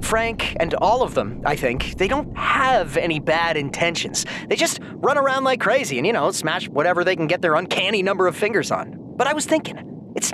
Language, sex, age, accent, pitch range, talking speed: English, male, 30-49, American, 170-270 Hz, 220 wpm